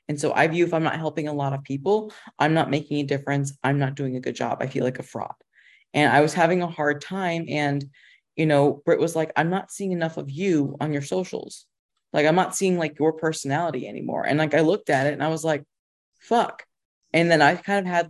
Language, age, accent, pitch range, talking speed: English, 20-39, American, 140-165 Hz, 250 wpm